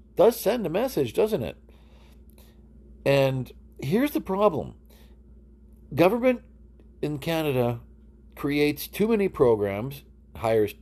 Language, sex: English, male